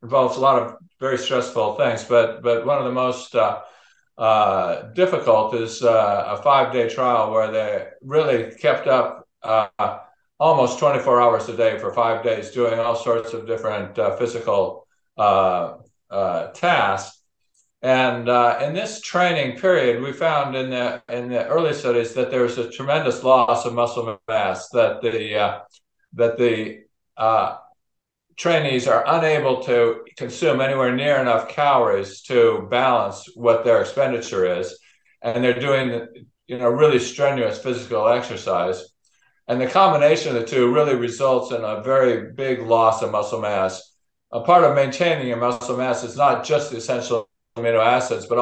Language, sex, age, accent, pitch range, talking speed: English, male, 50-69, American, 115-145 Hz, 160 wpm